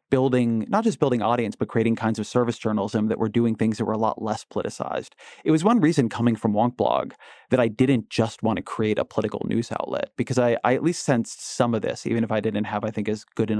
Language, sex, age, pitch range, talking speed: English, male, 30-49, 110-130 Hz, 255 wpm